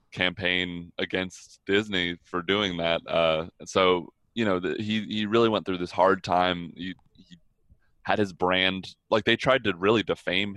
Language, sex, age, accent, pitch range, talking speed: English, male, 20-39, American, 90-100 Hz, 165 wpm